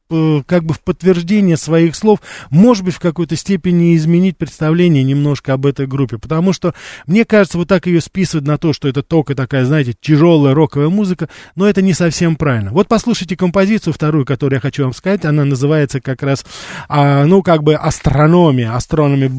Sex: male